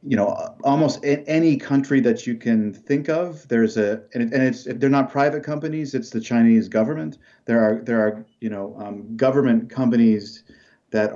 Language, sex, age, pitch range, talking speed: English, male, 40-59, 105-130 Hz, 170 wpm